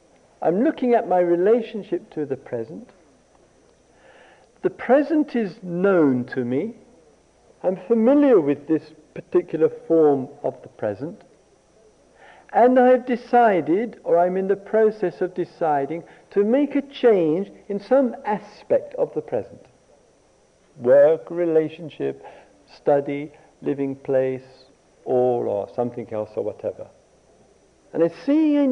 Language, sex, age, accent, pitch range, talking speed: English, male, 50-69, British, 155-255 Hz, 120 wpm